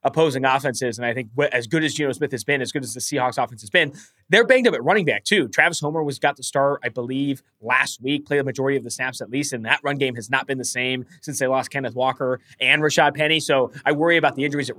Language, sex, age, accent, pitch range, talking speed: English, male, 20-39, American, 130-175 Hz, 280 wpm